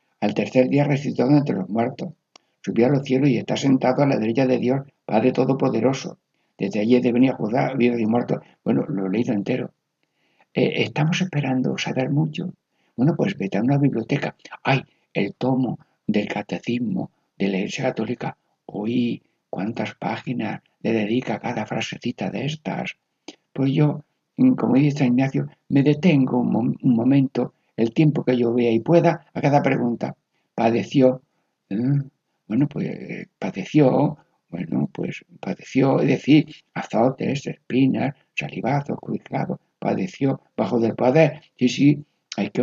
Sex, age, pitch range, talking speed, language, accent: male, 60-79, 120-145 Hz, 155 wpm, Spanish, Spanish